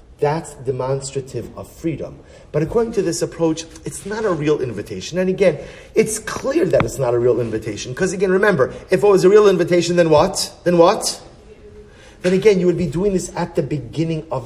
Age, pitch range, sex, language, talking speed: 30-49, 145-190 Hz, male, English, 200 wpm